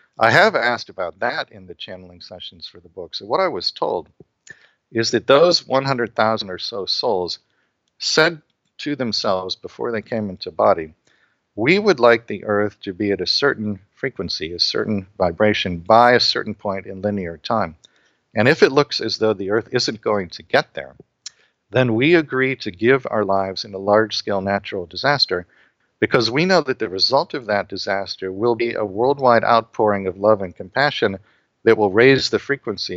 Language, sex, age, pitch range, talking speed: English, male, 50-69, 95-120 Hz, 185 wpm